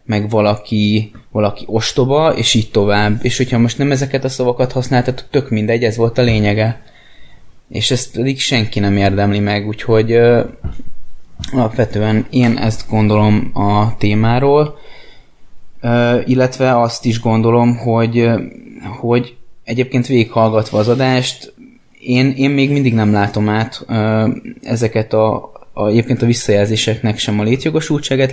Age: 20-39